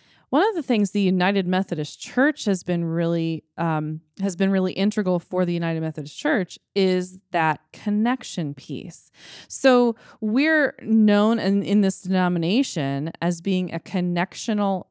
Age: 20-39